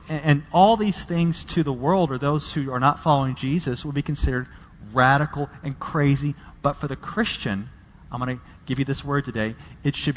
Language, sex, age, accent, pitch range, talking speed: English, male, 40-59, American, 115-155 Hz, 200 wpm